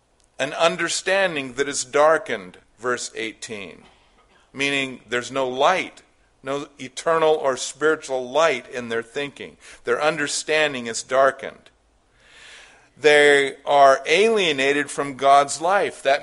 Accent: American